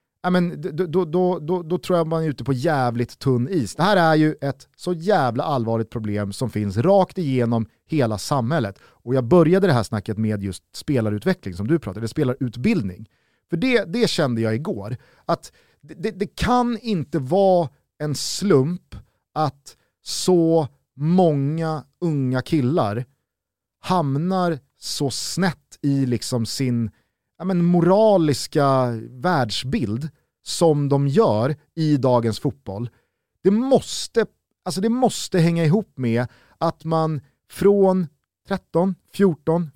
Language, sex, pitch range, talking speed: Swedish, male, 120-175 Hz, 140 wpm